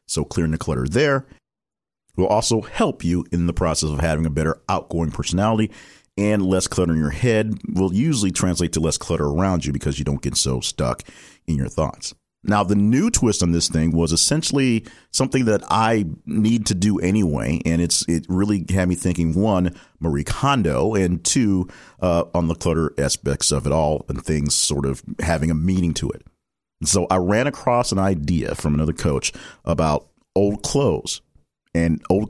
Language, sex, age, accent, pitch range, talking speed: English, male, 50-69, American, 80-100 Hz, 185 wpm